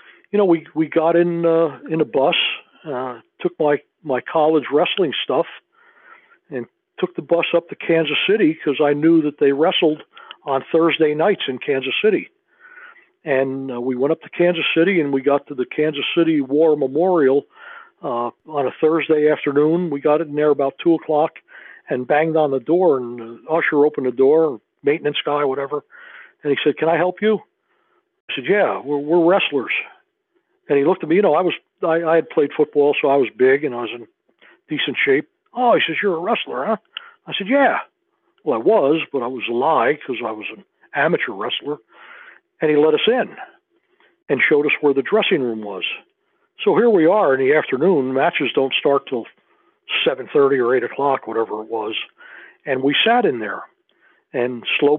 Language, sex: English, male